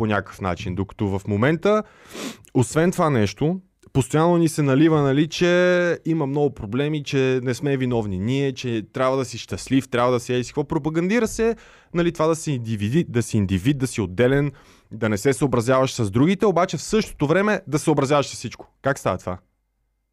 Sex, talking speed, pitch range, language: male, 190 wpm, 115-160 Hz, Bulgarian